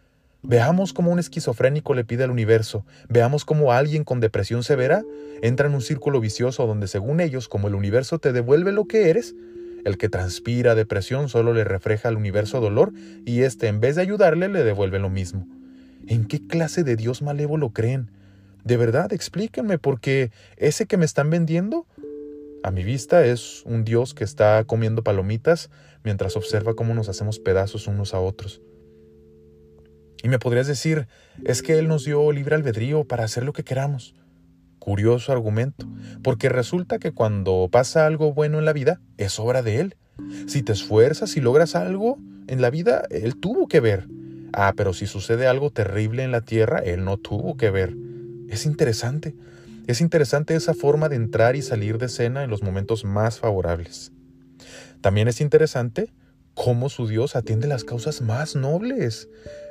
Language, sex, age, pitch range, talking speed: Spanish, male, 30-49, 105-150 Hz, 175 wpm